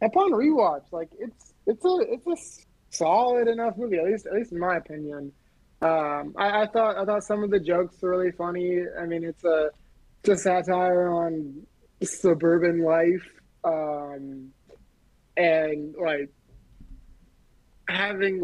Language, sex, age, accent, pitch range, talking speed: English, male, 20-39, American, 155-185 Hz, 145 wpm